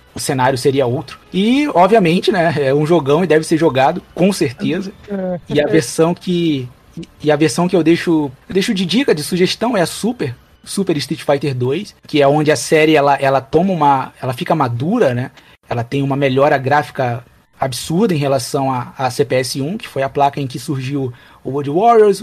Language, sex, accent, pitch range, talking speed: Portuguese, male, Brazilian, 135-180 Hz, 195 wpm